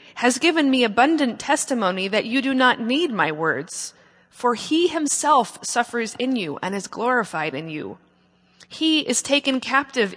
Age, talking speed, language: 30-49, 160 wpm, English